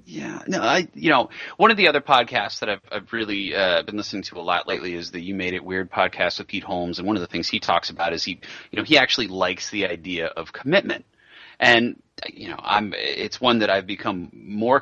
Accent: American